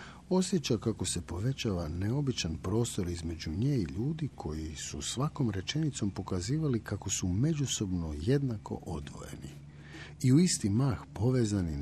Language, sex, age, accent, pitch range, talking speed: Croatian, male, 50-69, native, 85-130 Hz, 125 wpm